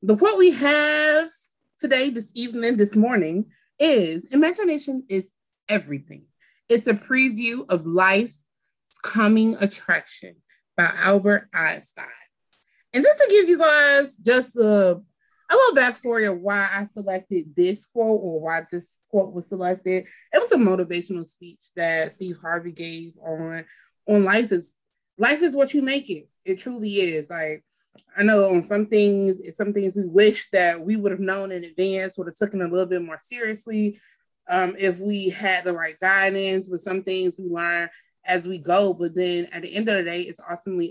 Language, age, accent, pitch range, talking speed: English, 20-39, American, 175-215 Hz, 175 wpm